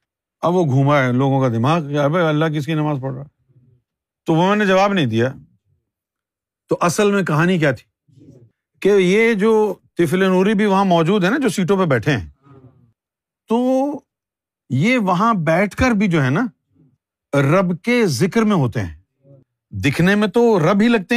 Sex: male